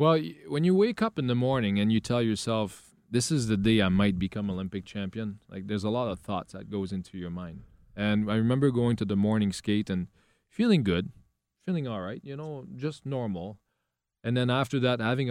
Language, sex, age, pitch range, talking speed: English, male, 20-39, 95-110 Hz, 215 wpm